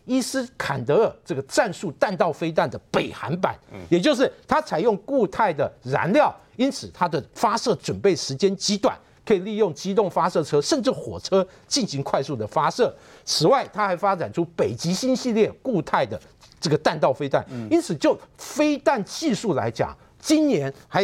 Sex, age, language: male, 50-69, Chinese